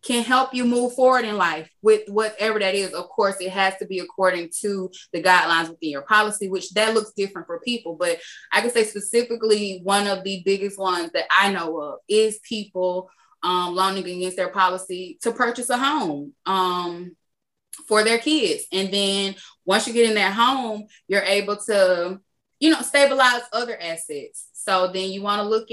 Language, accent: English, American